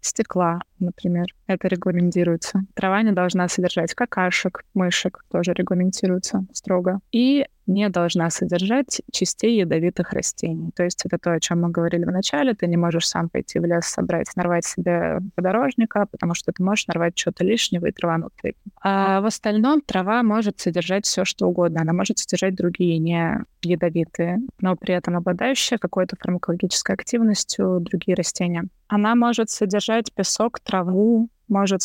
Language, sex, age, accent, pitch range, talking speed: Russian, female, 20-39, native, 180-210 Hz, 150 wpm